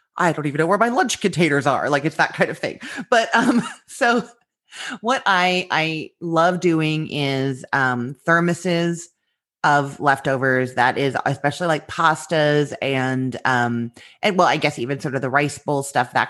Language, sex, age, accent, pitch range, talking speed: English, female, 30-49, American, 140-205 Hz, 175 wpm